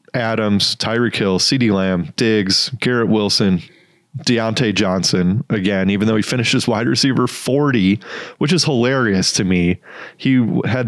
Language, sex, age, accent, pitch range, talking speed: English, male, 30-49, American, 100-130 Hz, 140 wpm